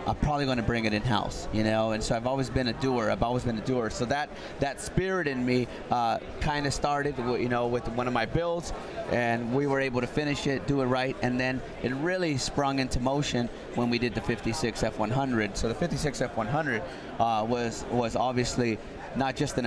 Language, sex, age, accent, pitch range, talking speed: English, male, 30-49, American, 115-135 Hz, 215 wpm